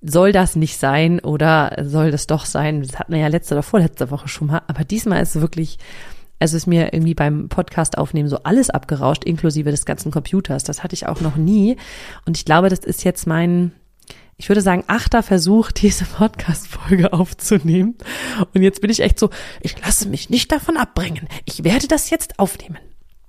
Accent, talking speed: German, 195 wpm